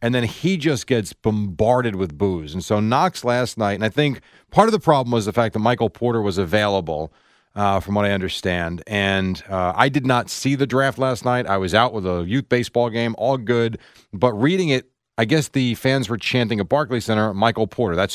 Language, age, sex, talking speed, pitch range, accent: English, 40-59, male, 225 wpm, 110-145 Hz, American